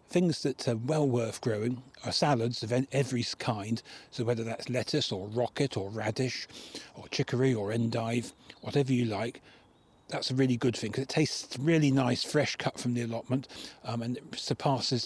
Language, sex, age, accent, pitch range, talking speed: English, male, 40-59, British, 115-135 Hz, 180 wpm